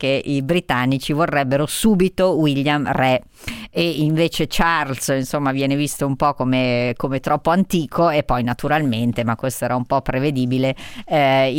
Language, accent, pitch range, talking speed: Italian, native, 135-155 Hz, 150 wpm